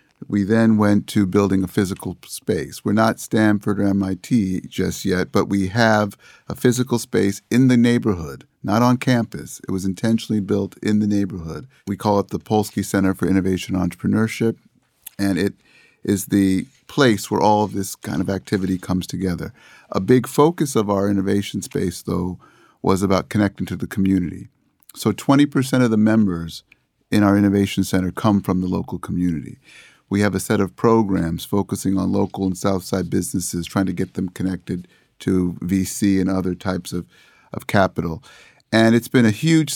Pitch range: 95-110 Hz